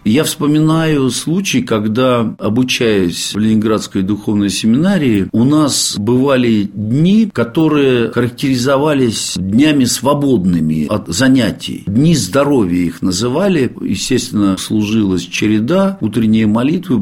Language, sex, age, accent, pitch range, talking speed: Russian, male, 50-69, native, 110-155 Hz, 100 wpm